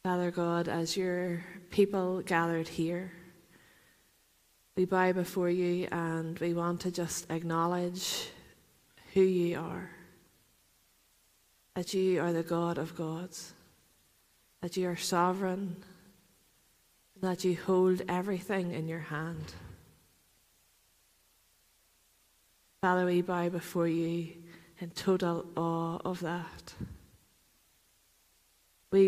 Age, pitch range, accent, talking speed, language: 30-49, 165-180 Hz, Irish, 105 wpm, English